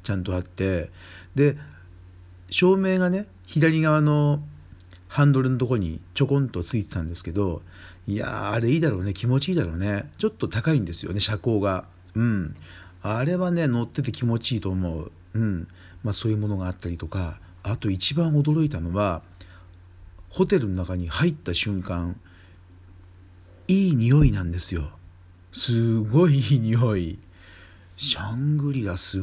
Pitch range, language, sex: 90-125 Hz, Japanese, male